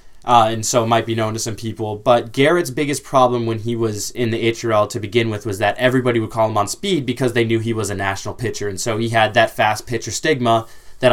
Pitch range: 110-125 Hz